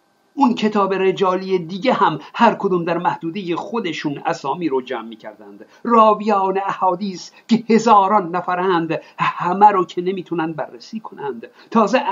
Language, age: Persian, 50-69